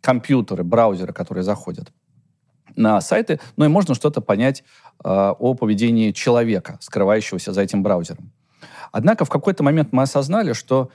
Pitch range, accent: 115-150 Hz, native